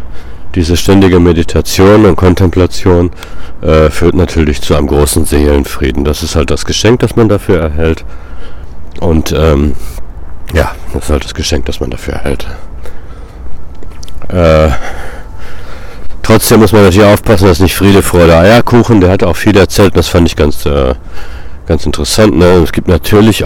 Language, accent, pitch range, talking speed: German, German, 75-90 Hz, 155 wpm